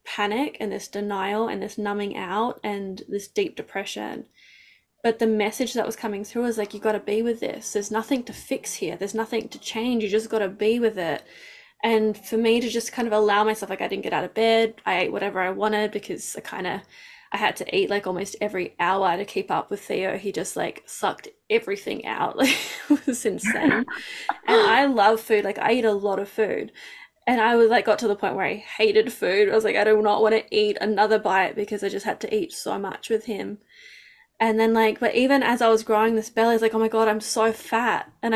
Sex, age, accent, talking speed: female, 10-29, Australian, 245 wpm